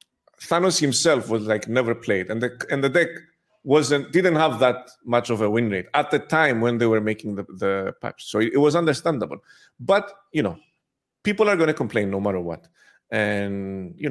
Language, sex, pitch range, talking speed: English, male, 115-160 Hz, 205 wpm